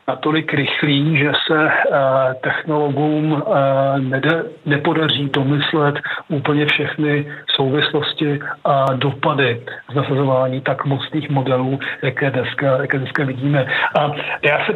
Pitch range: 140-160 Hz